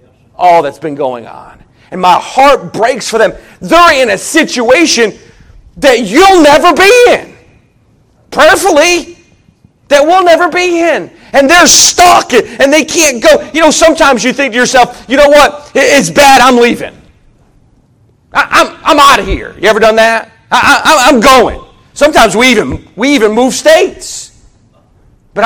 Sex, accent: male, American